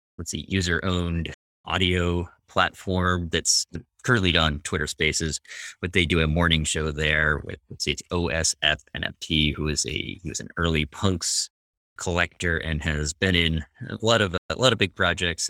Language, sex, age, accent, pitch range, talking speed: English, male, 30-49, American, 75-85 Hz, 170 wpm